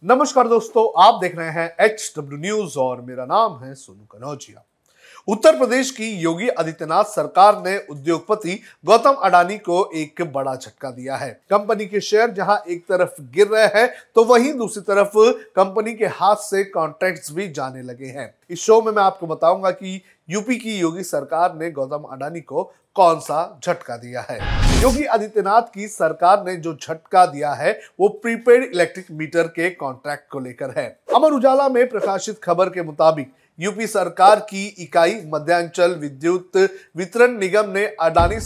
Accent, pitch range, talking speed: native, 160-215 Hz, 160 wpm